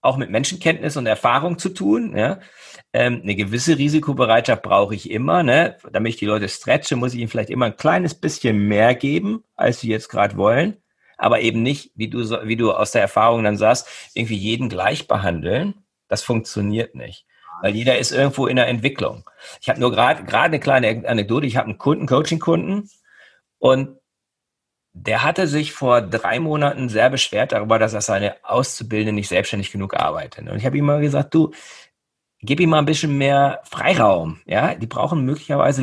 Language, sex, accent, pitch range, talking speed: German, male, German, 115-155 Hz, 185 wpm